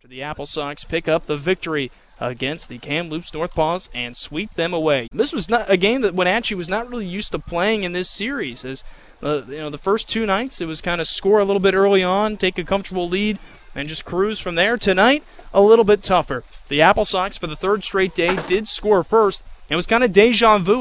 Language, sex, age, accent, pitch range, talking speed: English, male, 20-39, American, 175-250 Hz, 235 wpm